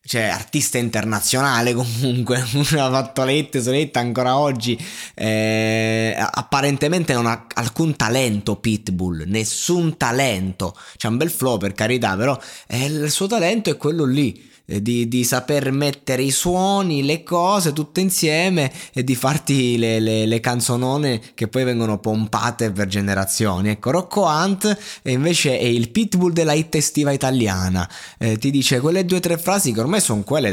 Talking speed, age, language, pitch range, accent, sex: 155 wpm, 20-39, Italian, 110-145 Hz, native, male